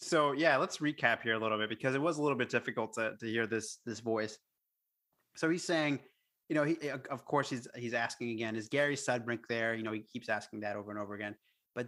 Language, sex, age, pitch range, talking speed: English, male, 30-49, 115-140 Hz, 240 wpm